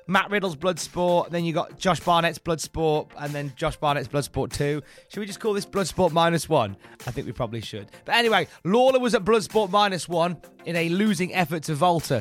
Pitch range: 135-190 Hz